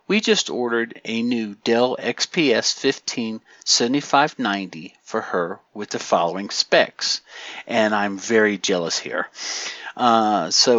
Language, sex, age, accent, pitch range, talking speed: English, male, 50-69, American, 120-170 Hz, 115 wpm